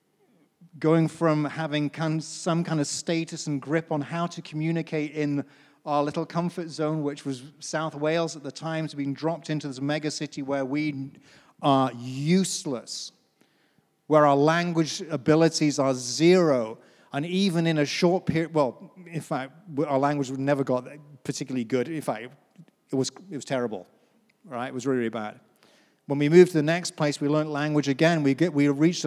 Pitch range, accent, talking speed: 145-170 Hz, British, 175 wpm